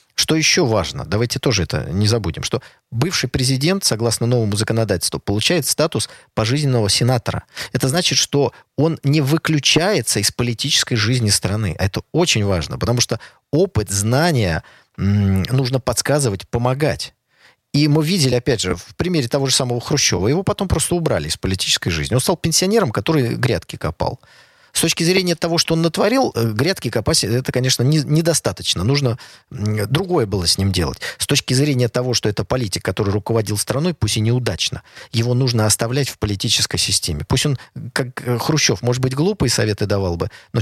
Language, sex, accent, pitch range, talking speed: Russian, male, native, 110-145 Hz, 165 wpm